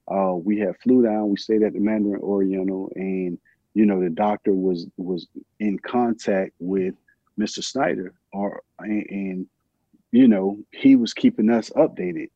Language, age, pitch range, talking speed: English, 40-59, 100-110 Hz, 160 wpm